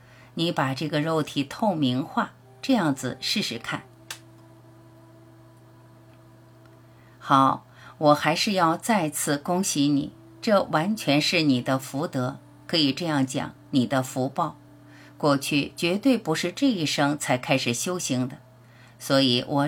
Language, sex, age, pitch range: Chinese, female, 50-69, 130-160 Hz